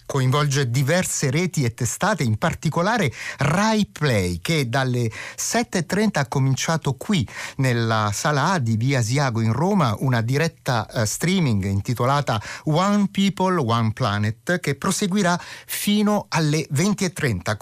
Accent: native